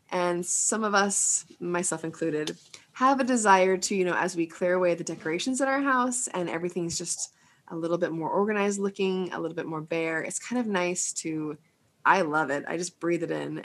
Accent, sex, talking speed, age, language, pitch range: American, female, 210 wpm, 20-39, English, 160-200 Hz